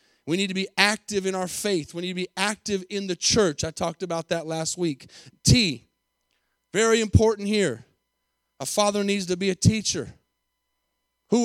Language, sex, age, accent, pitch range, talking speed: English, male, 30-49, American, 170-220 Hz, 180 wpm